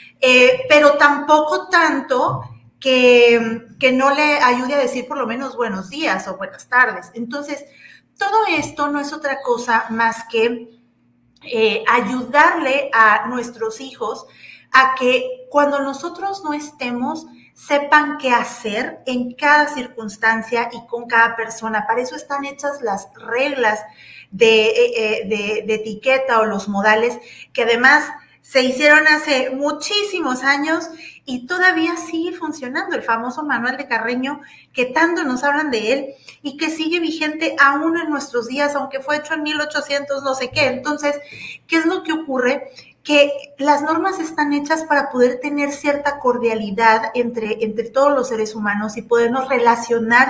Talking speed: 150 wpm